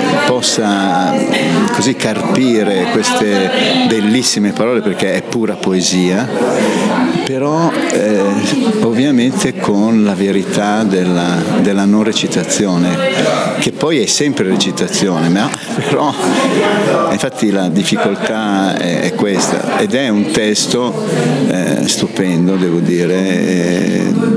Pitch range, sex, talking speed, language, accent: 90-110 Hz, male, 105 wpm, Italian, native